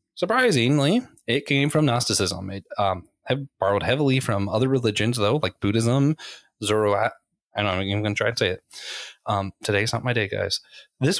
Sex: male